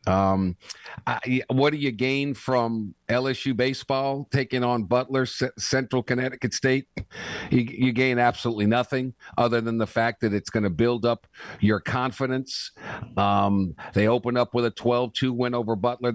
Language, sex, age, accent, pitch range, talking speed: English, male, 50-69, American, 110-130 Hz, 165 wpm